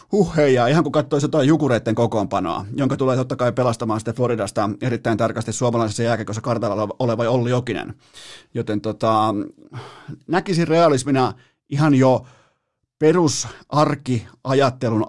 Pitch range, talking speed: 115-150 Hz, 120 wpm